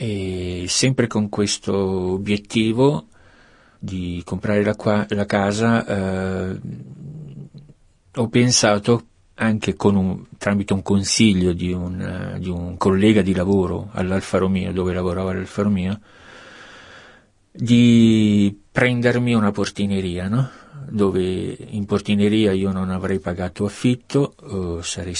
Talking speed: 110 wpm